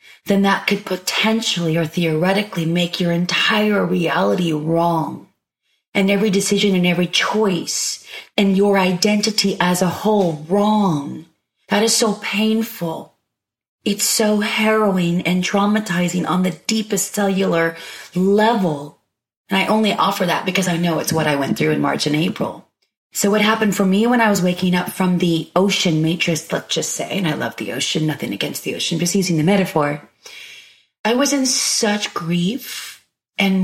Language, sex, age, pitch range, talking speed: English, female, 30-49, 175-210 Hz, 160 wpm